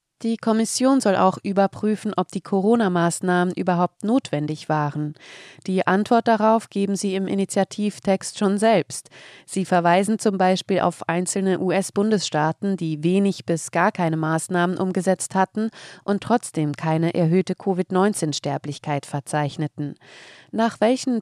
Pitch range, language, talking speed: 160-200 Hz, German, 120 wpm